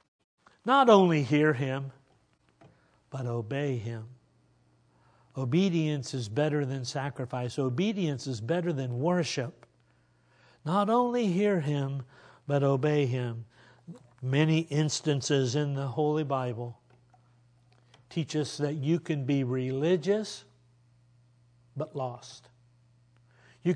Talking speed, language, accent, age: 100 wpm, English, American, 60-79